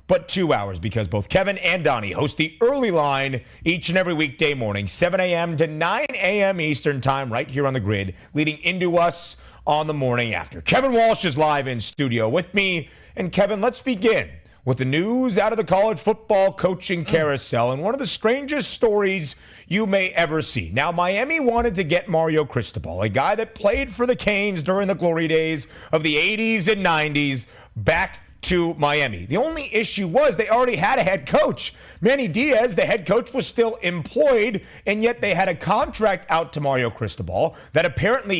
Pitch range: 130-200 Hz